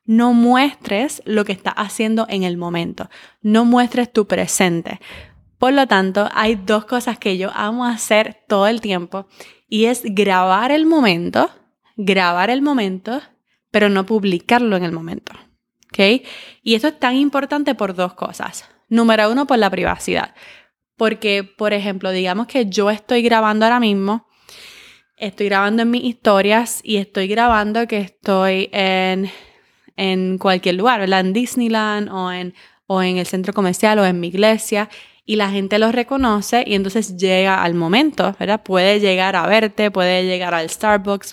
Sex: female